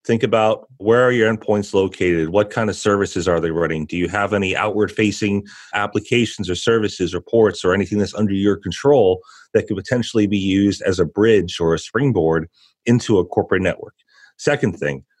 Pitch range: 95-115 Hz